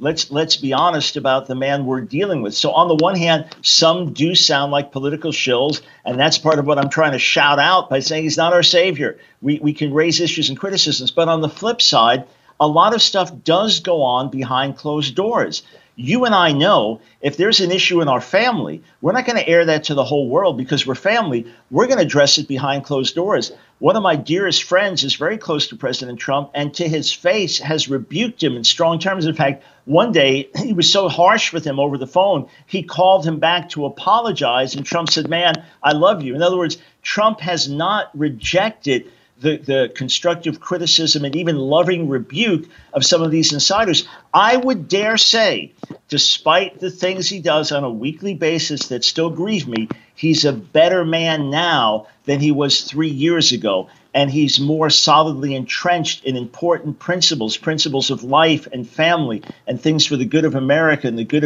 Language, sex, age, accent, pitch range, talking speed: English, male, 50-69, American, 140-170 Hz, 205 wpm